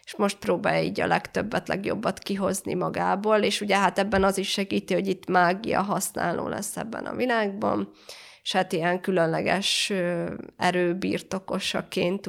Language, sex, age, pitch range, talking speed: Hungarian, female, 20-39, 180-205 Hz, 140 wpm